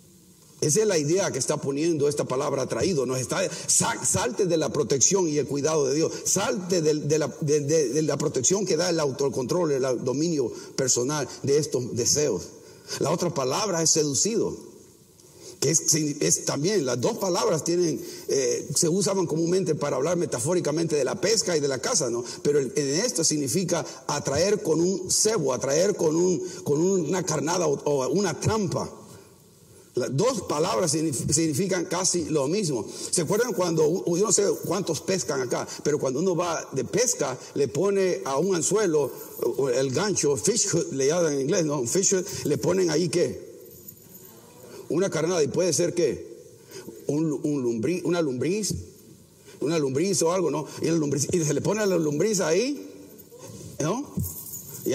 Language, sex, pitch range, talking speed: Spanish, male, 150-200 Hz, 160 wpm